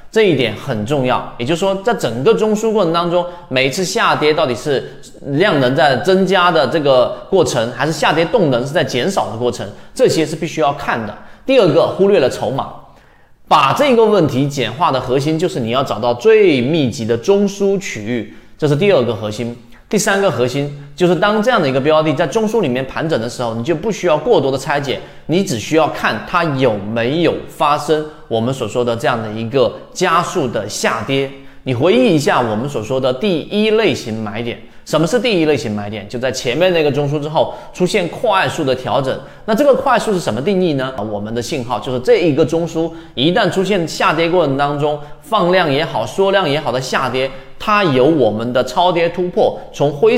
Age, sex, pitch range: 30-49, male, 125-180 Hz